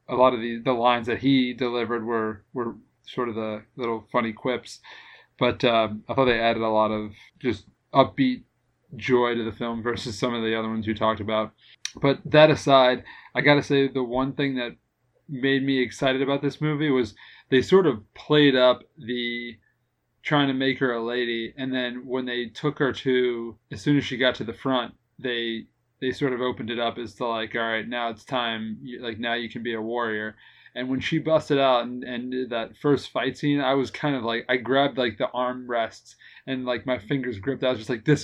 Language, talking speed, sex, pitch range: English, 220 wpm, male, 115-130 Hz